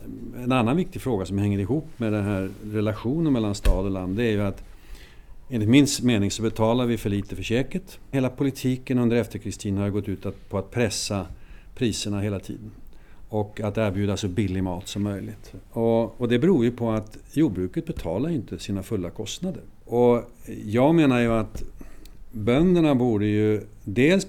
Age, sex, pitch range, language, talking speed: 50-69, male, 100-120 Hz, Swedish, 180 wpm